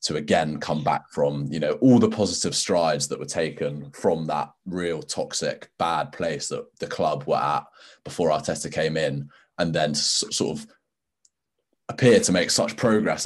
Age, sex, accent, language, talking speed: 20-39, male, British, English, 170 wpm